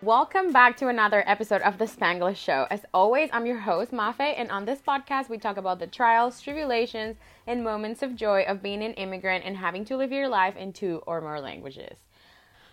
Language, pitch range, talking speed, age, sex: English, 160-225 Hz, 210 wpm, 20-39, female